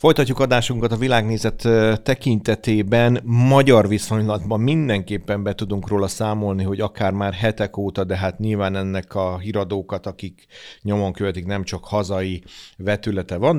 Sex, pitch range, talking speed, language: male, 95-110 Hz, 135 wpm, Hungarian